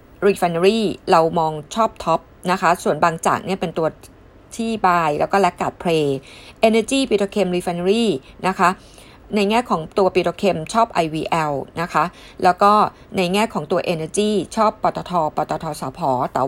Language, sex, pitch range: Thai, female, 170-210 Hz